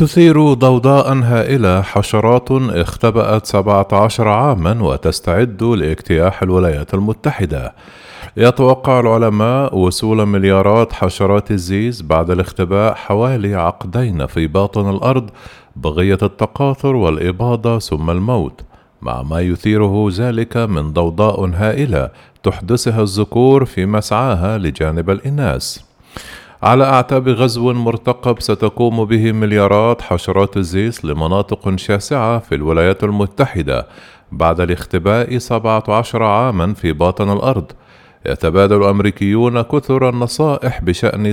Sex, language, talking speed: male, Arabic, 100 wpm